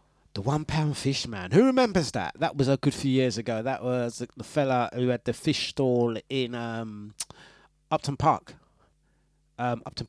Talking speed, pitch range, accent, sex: 180 wpm, 130-160 Hz, British, male